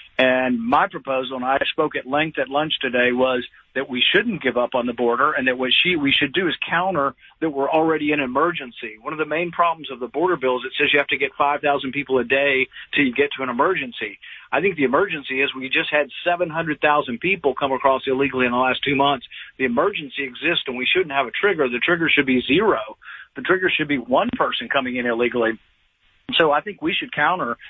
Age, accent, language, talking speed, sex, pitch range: 50-69, American, English, 230 wpm, male, 130-155 Hz